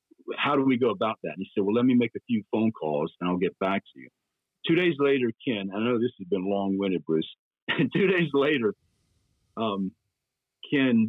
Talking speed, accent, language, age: 210 wpm, American, English, 50-69